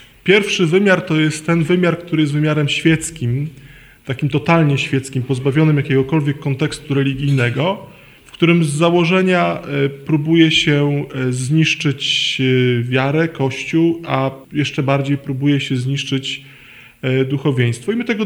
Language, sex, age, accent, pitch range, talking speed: Polish, male, 20-39, native, 135-165 Hz, 120 wpm